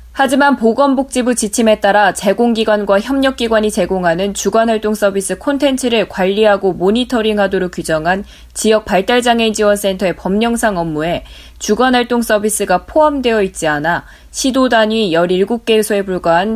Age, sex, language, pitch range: 20-39, female, Korean, 185-230 Hz